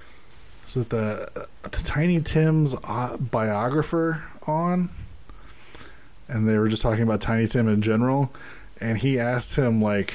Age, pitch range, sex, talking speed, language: 20-39, 100-135 Hz, male, 140 wpm, English